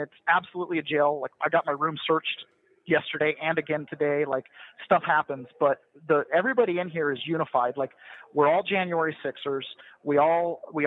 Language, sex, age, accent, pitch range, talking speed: English, male, 30-49, American, 140-170 Hz, 165 wpm